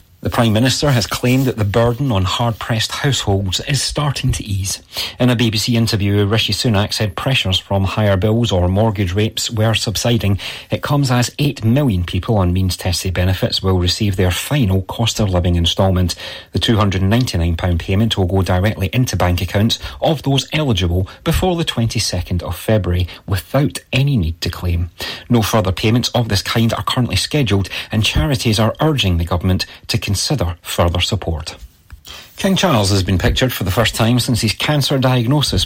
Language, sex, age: English, male, 30-49